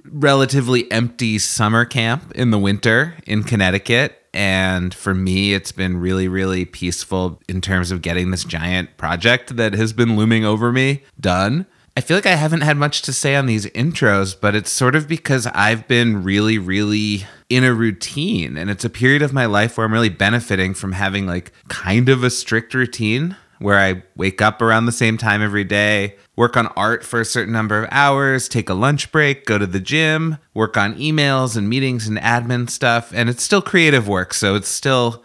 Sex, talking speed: male, 200 wpm